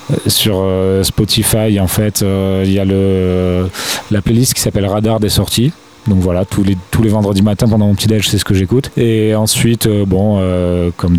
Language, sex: French, male